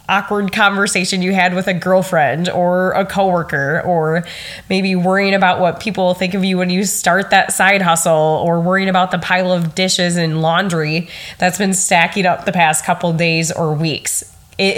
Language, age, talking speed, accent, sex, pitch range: English, 20-39, 185 wpm, American, female, 170-200 Hz